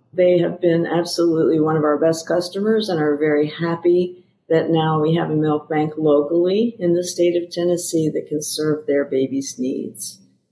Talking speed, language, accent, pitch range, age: 185 wpm, English, American, 155-175 Hz, 50-69